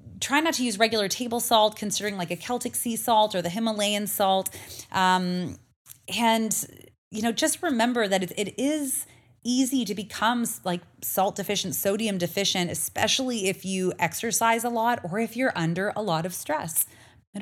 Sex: female